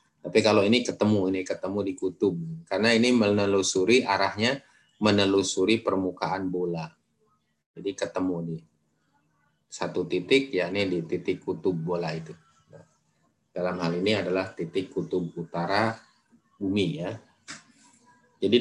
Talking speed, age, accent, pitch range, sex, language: 115 wpm, 30-49, native, 90-110 Hz, male, Indonesian